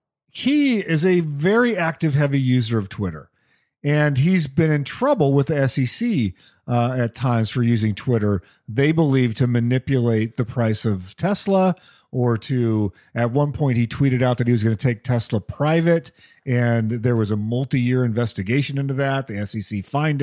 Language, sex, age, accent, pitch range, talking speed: English, male, 40-59, American, 125-175 Hz, 170 wpm